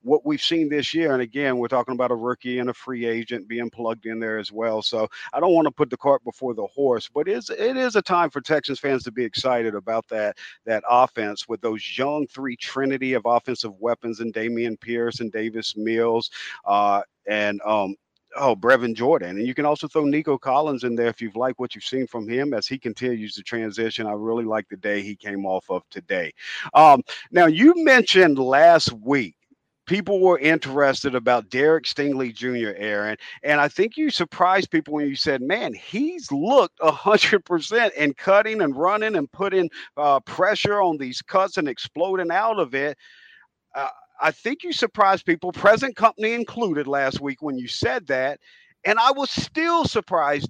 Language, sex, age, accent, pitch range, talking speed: English, male, 50-69, American, 120-195 Hz, 195 wpm